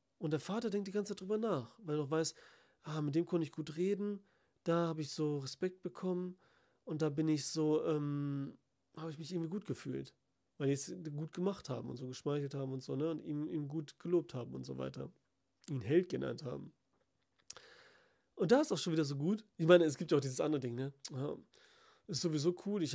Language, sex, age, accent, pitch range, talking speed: German, male, 40-59, German, 150-215 Hz, 225 wpm